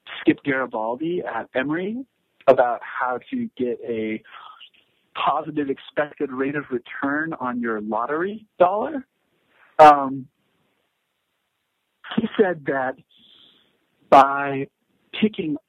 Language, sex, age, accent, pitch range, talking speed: English, male, 50-69, American, 135-220 Hz, 90 wpm